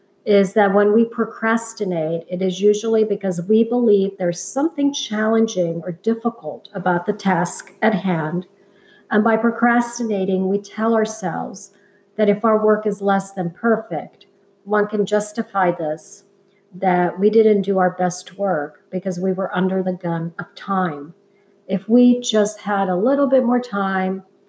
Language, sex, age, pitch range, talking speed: English, female, 50-69, 185-215 Hz, 155 wpm